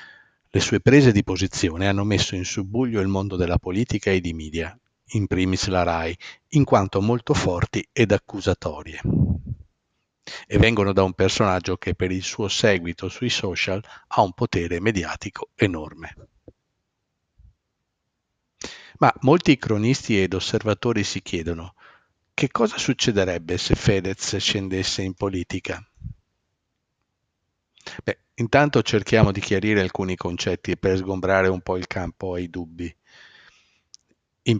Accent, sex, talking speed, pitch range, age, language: native, male, 130 wpm, 90-110 Hz, 50-69, Italian